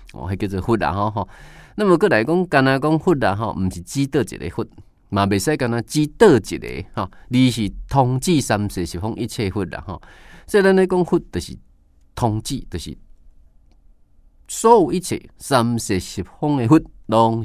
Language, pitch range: Chinese, 95-150 Hz